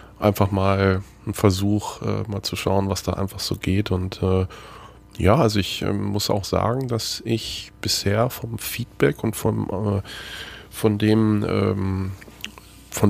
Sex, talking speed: male, 155 wpm